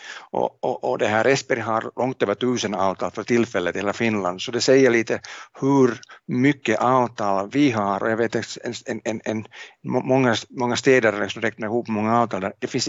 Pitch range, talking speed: 105-125 Hz, 190 wpm